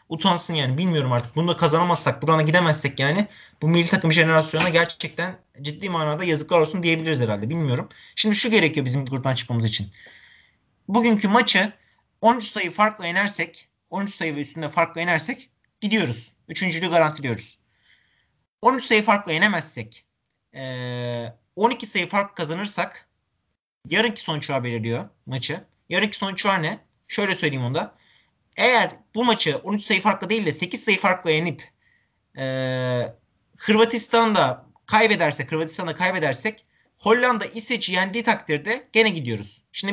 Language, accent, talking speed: Turkish, native, 130 wpm